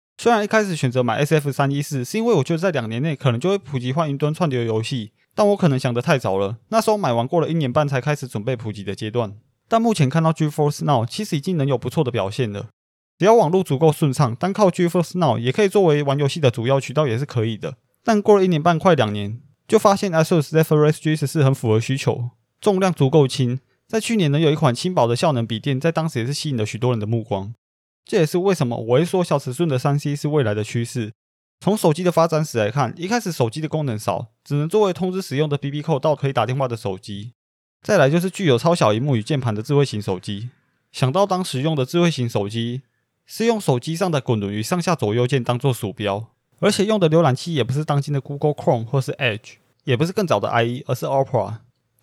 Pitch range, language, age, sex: 120-165 Hz, Chinese, 20-39, male